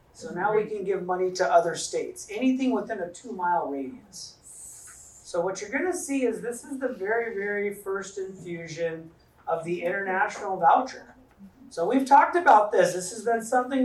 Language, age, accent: English, 40-59, American